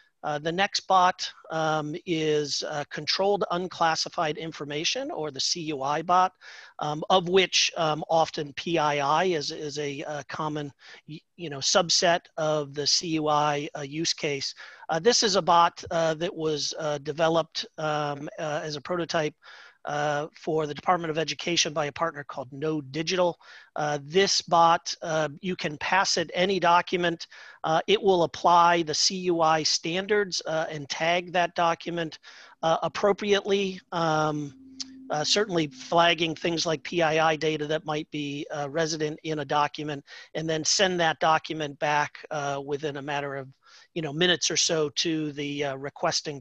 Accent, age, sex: American, 40-59, male